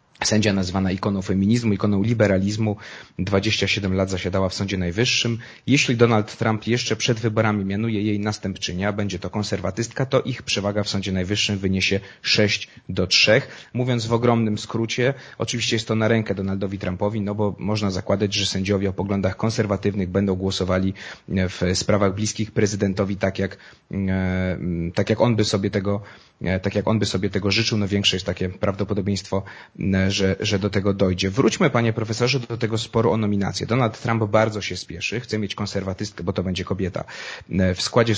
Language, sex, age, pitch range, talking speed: Polish, male, 30-49, 95-110 Hz, 170 wpm